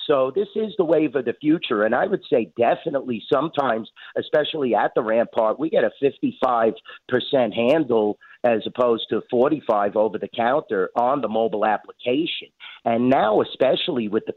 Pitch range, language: 115-135 Hz, English